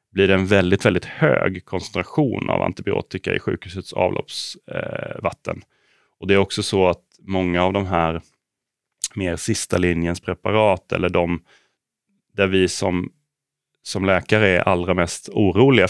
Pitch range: 90-105 Hz